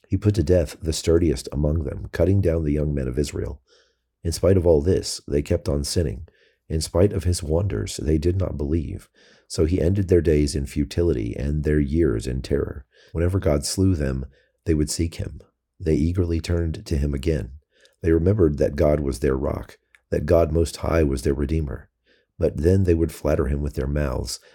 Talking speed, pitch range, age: 200 wpm, 75-90 Hz, 40-59